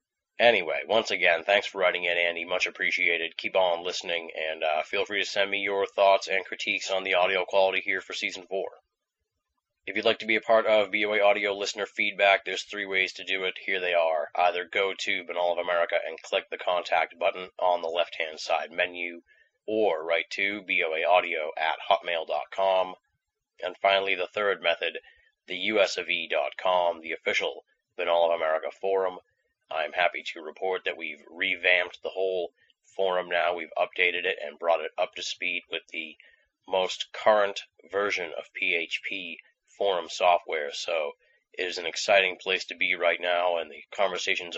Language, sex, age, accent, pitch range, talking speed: English, male, 30-49, American, 90-100 Hz, 175 wpm